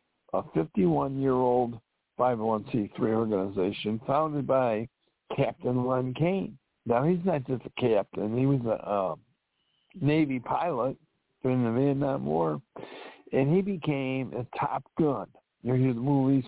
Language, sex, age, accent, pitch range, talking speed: English, male, 60-79, American, 110-140 Hz, 125 wpm